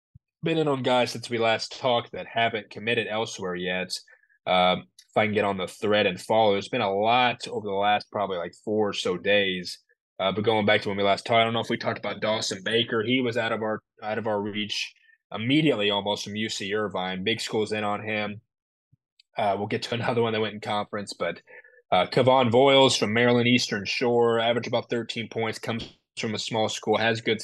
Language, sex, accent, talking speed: English, male, American, 225 wpm